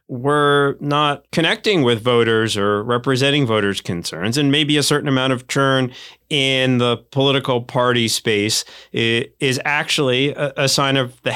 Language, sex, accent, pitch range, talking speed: English, male, American, 110-145 Hz, 145 wpm